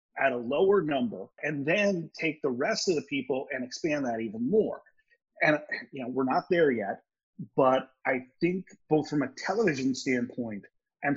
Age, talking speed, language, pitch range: 30-49, 175 wpm, English, 130-200 Hz